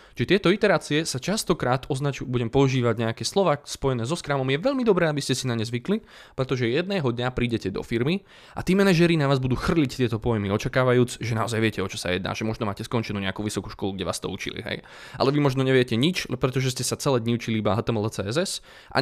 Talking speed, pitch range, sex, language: 225 wpm, 115-145 Hz, male, Slovak